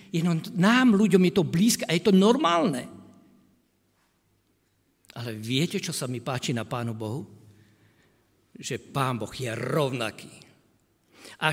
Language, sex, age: Slovak, male, 60-79